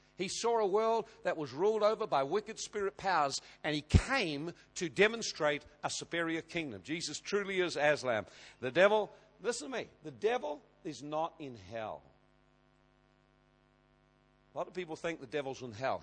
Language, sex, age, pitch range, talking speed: English, male, 60-79, 140-185 Hz, 165 wpm